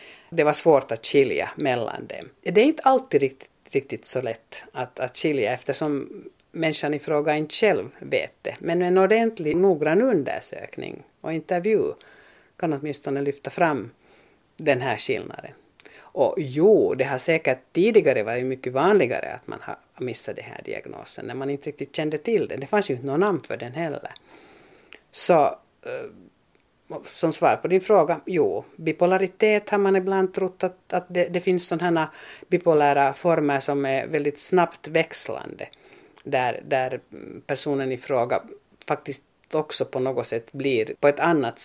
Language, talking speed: Finnish, 160 wpm